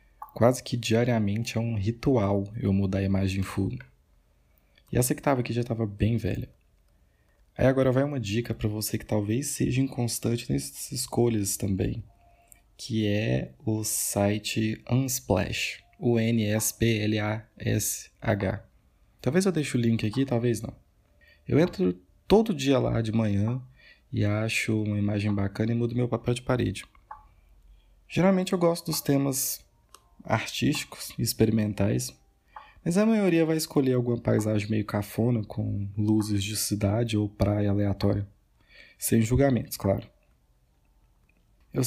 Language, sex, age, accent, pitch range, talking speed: Portuguese, male, 20-39, Brazilian, 100-125 Hz, 140 wpm